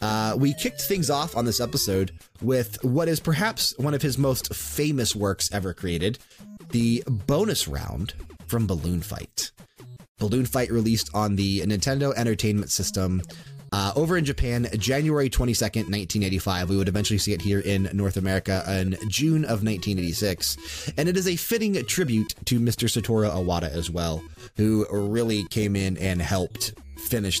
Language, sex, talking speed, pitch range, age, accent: English, male, 160 wpm, 90-115 Hz, 30-49, American